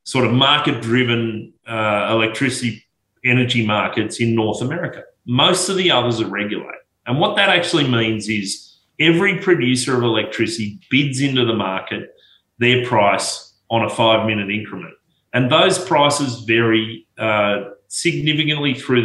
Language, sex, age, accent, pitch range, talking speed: English, male, 30-49, Australian, 105-135 Hz, 130 wpm